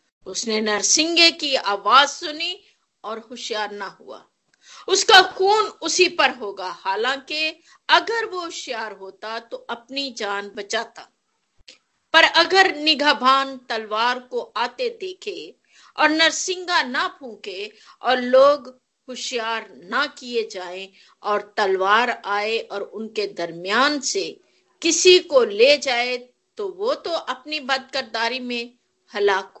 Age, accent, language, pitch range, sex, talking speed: 50-69, native, Hindi, 235-355 Hz, female, 120 wpm